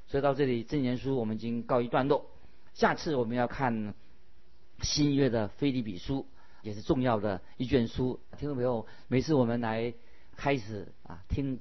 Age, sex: 50-69, male